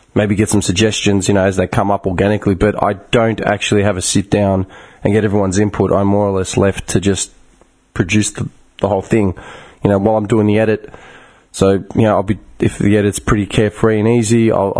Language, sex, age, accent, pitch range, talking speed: English, male, 20-39, Australian, 100-120 Hz, 220 wpm